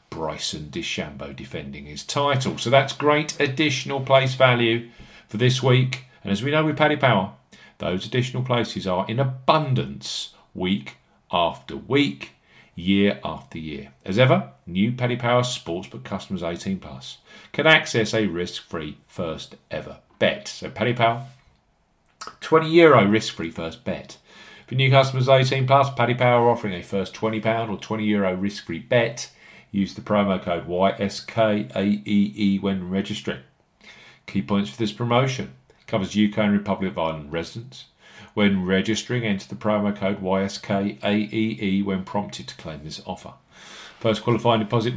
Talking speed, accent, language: 145 wpm, British, English